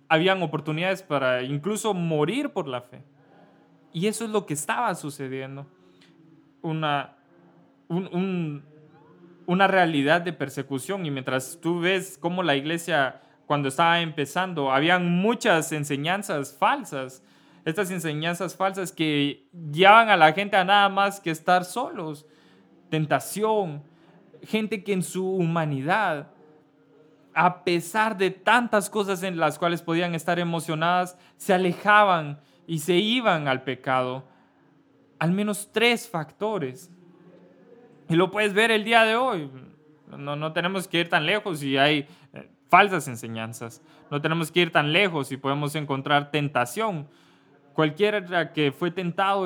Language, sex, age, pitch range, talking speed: English, male, 20-39, 145-185 Hz, 130 wpm